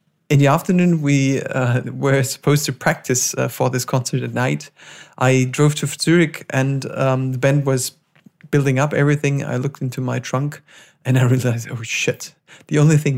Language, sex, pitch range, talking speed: English, male, 130-155 Hz, 180 wpm